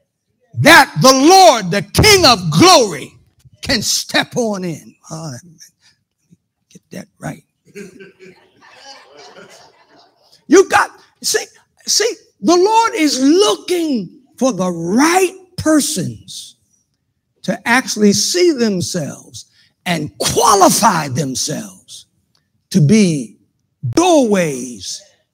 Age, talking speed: 60-79, 85 wpm